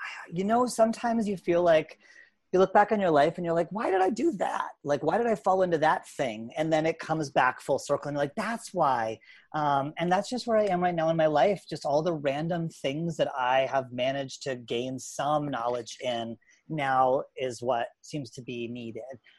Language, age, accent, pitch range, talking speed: English, 30-49, American, 130-165 Hz, 225 wpm